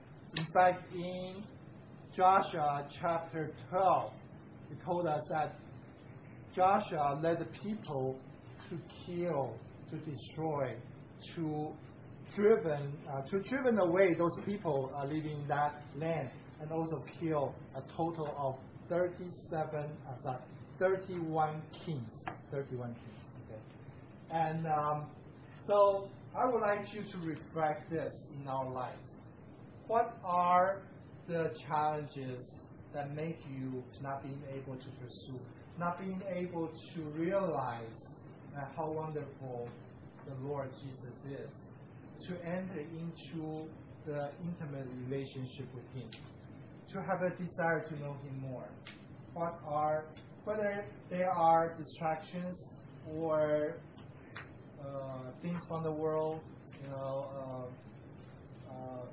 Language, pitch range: English, 135-165 Hz